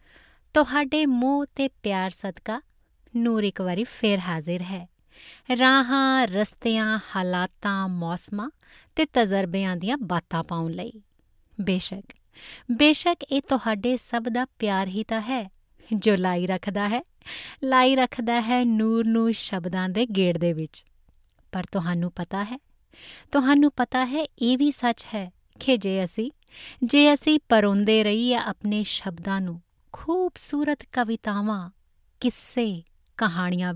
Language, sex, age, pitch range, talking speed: Punjabi, female, 20-39, 195-260 Hz, 100 wpm